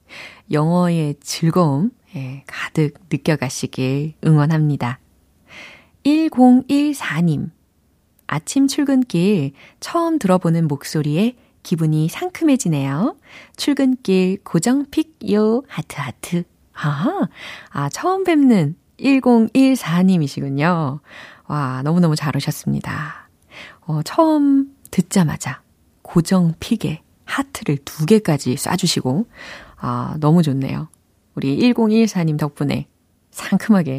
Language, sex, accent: Korean, female, native